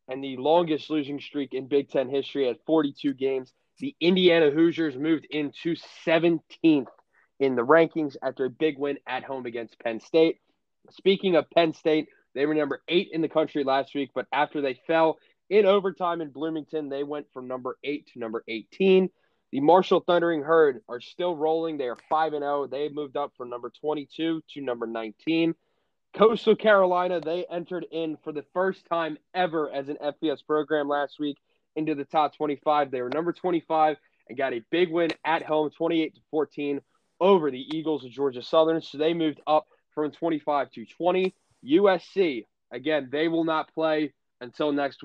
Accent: American